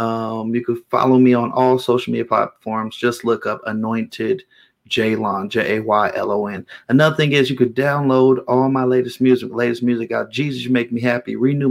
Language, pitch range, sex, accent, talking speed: English, 120-130 Hz, male, American, 205 wpm